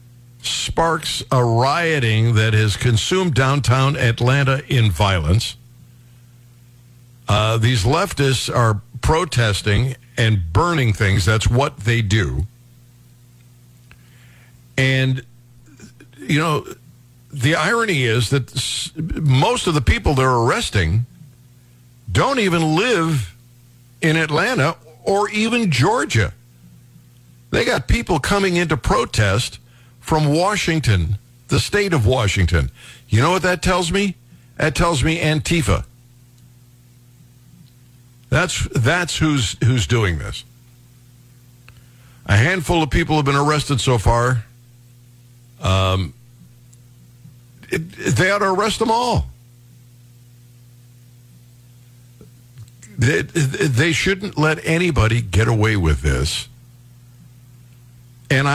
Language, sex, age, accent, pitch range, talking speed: English, male, 60-79, American, 120-140 Hz, 100 wpm